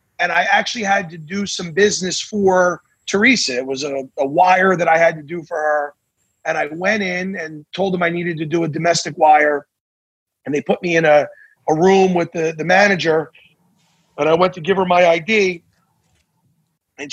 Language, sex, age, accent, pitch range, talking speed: English, male, 30-49, American, 160-200 Hz, 200 wpm